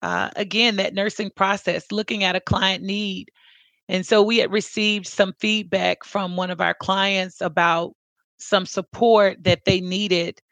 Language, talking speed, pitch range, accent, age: English, 160 wpm, 185-205 Hz, American, 30-49